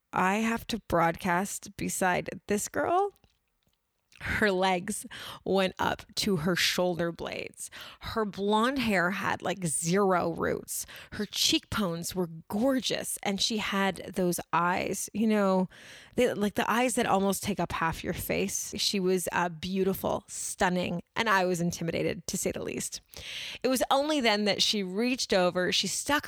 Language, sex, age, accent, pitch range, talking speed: English, female, 20-39, American, 180-215 Hz, 150 wpm